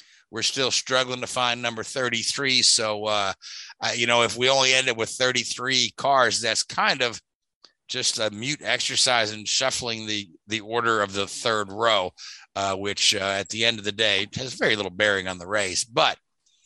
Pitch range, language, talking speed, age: 105-130 Hz, English, 185 wpm, 50-69